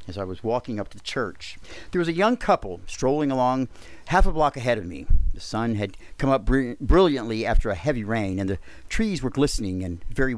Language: English